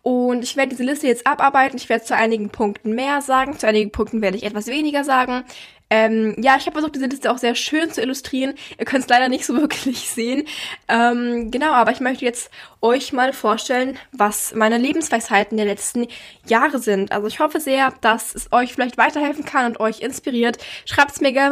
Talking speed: 210 wpm